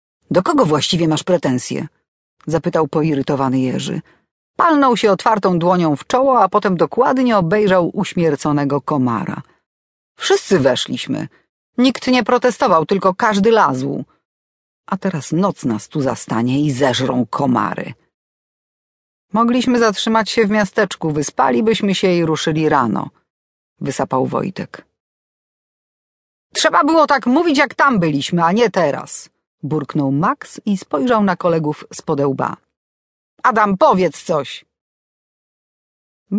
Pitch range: 145-225 Hz